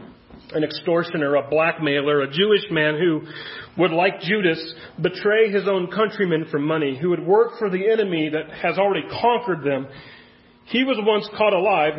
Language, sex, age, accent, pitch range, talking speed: English, male, 40-59, American, 145-195 Hz, 165 wpm